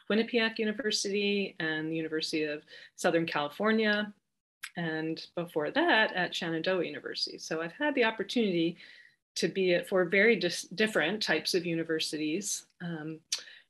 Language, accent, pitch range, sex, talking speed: English, American, 165-215 Hz, female, 125 wpm